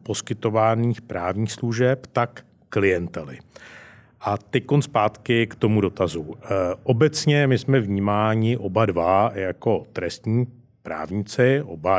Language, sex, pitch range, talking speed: Czech, male, 95-110 Hz, 110 wpm